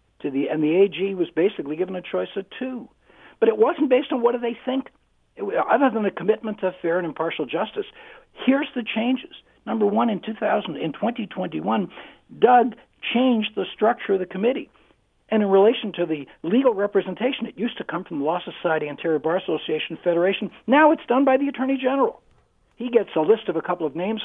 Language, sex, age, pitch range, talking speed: English, male, 60-79, 180-255 Hz, 205 wpm